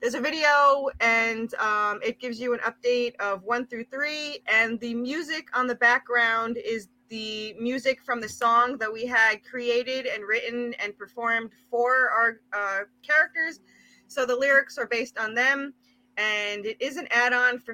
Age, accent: 20-39, American